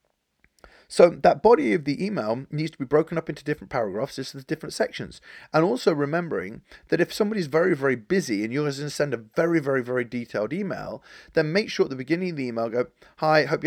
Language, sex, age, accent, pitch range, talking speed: English, male, 30-49, British, 120-160 Hz, 220 wpm